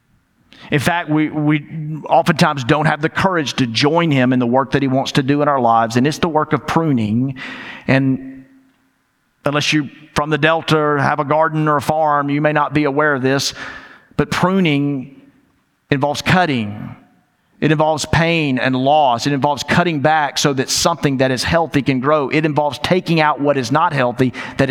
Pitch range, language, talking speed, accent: 130-155 Hz, English, 190 wpm, American